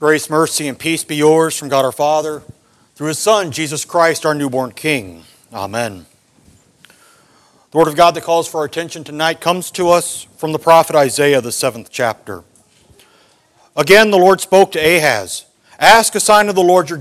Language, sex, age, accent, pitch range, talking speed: English, male, 40-59, American, 145-190 Hz, 185 wpm